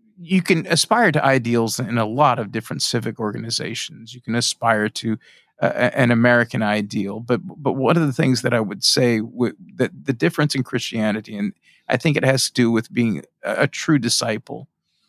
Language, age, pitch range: English, 40-59, 115-150 Hz